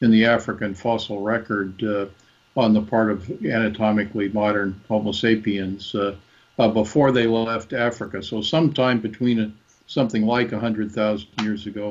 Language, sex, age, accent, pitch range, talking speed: English, male, 50-69, American, 105-115 Hz, 145 wpm